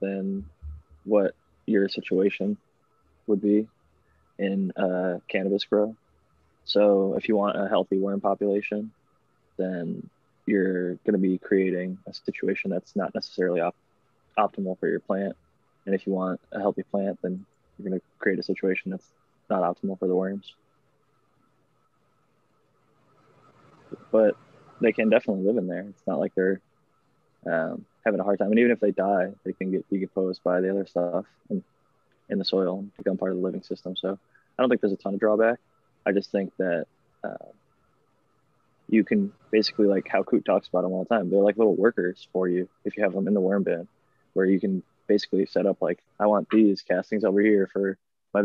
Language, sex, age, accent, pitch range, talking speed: English, male, 20-39, American, 90-100 Hz, 180 wpm